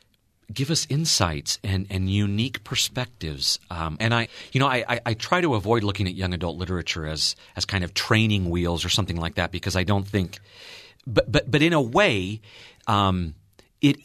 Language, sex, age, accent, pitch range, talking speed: English, male, 40-59, American, 90-115 Hz, 190 wpm